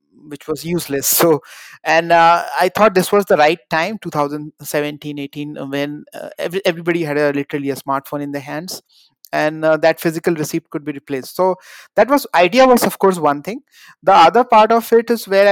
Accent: Indian